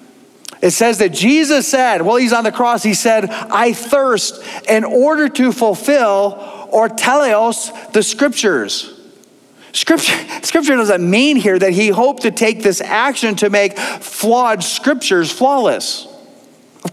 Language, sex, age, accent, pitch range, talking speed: English, male, 40-59, American, 195-250 Hz, 140 wpm